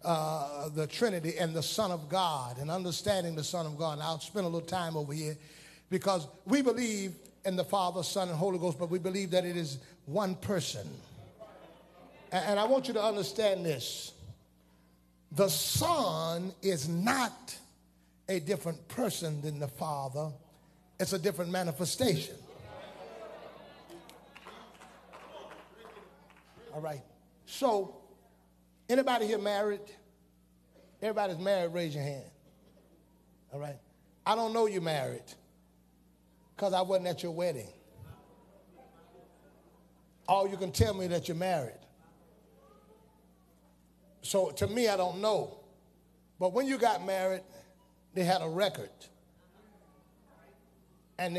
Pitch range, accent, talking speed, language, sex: 150-195 Hz, American, 125 wpm, English, male